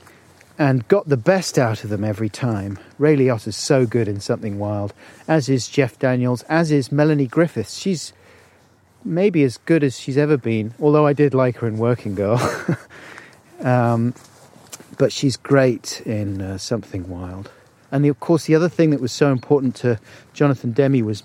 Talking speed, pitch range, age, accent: 175 wpm, 110-145 Hz, 40-59, British